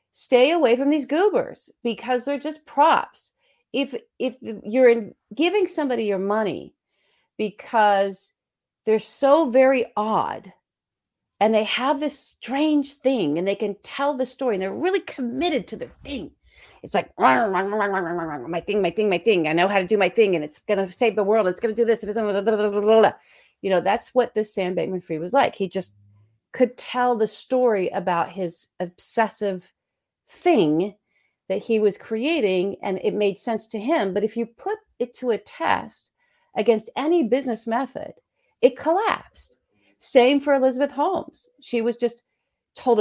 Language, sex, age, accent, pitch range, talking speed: English, female, 40-59, American, 200-280 Hz, 180 wpm